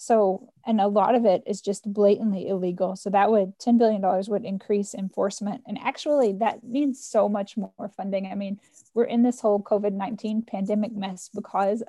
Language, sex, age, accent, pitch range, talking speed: English, female, 10-29, American, 200-230 Hz, 180 wpm